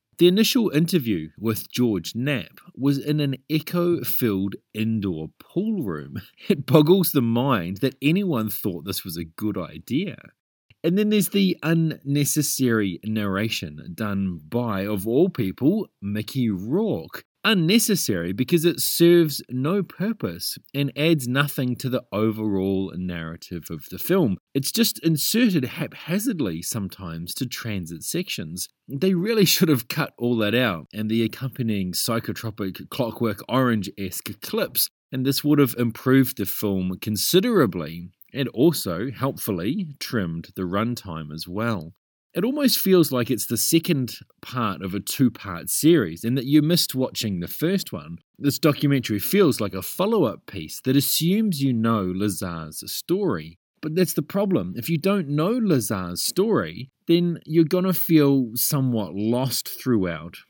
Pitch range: 100-165 Hz